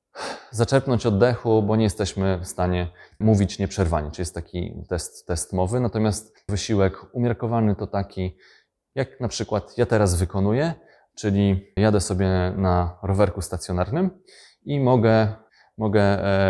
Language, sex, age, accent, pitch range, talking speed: Polish, male, 20-39, native, 95-110 Hz, 130 wpm